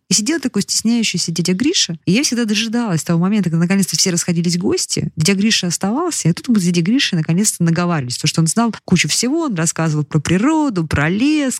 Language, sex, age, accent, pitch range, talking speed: Russian, female, 30-49, native, 155-205 Hz, 205 wpm